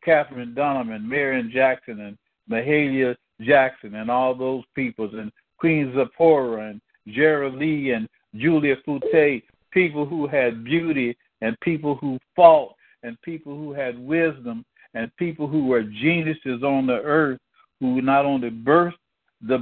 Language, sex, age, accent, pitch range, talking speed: English, male, 50-69, American, 130-155 Hz, 145 wpm